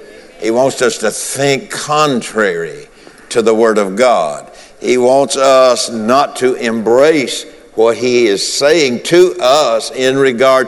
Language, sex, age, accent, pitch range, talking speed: English, male, 60-79, American, 115-160 Hz, 140 wpm